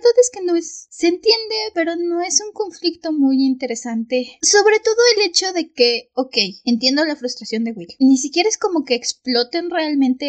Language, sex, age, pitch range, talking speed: Spanish, female, 20-39, 240-295 Hz, 185 wpm